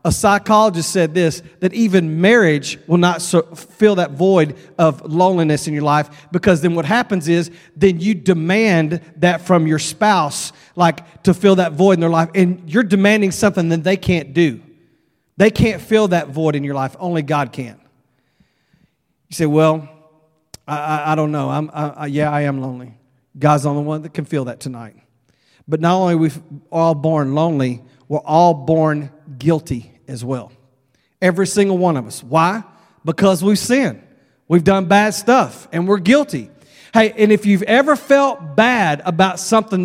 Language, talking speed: English, 180 wpm